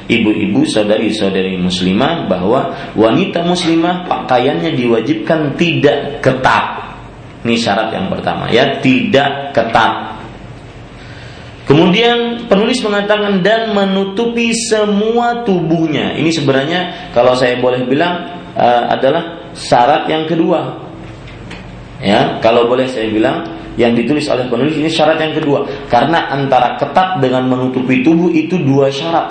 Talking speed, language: 115 wpm, Malay